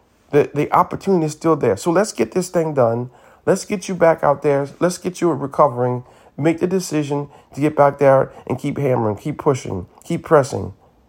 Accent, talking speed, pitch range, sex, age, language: American, 195 wpm, 120-150 Hz, male, 40-59, English